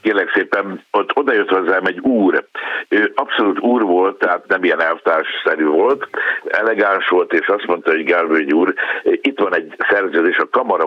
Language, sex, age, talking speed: Hungarian, male, 60-79, 165 wpm